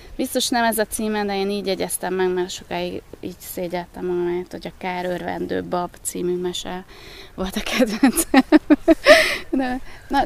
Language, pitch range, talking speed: Hungarian, 175-215 Hz, 145 wpm